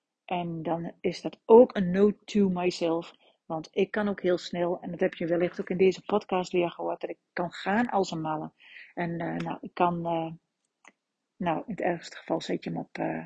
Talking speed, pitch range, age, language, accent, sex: 220 wpm, 170-200 Hz, 40-59, Dutch, Dutch, female